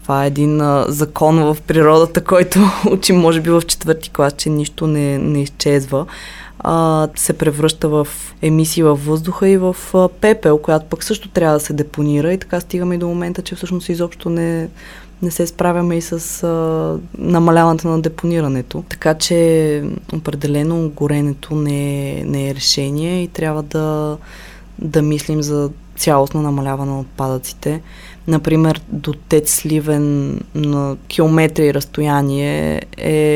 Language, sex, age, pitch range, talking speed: Bulgarian, female, 20-39, 140-165 Hz, 140 wpm